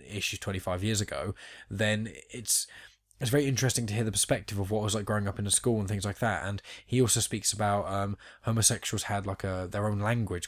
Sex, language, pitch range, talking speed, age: male, English, 95-110 Hz, 230 wpm, 10-29